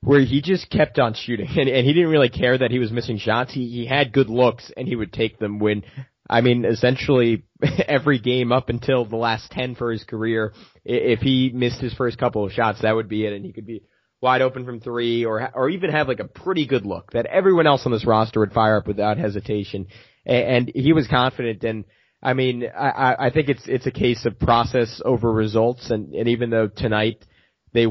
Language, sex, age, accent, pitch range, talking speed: English, male, 20-39, American, 110-125 Hz, 230 wpm